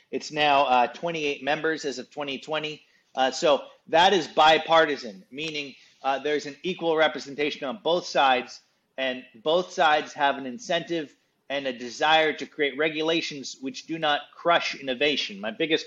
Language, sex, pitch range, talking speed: English, male, 135-160 Hz, 155 wpm